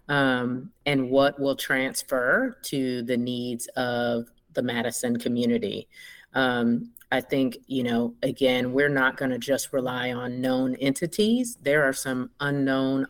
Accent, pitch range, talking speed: American, 125-145 Hz, 140 wpm